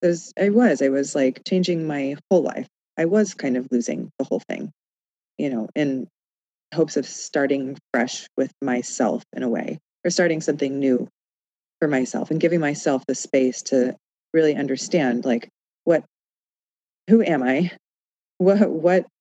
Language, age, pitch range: English, 20-39, 130-170 Hz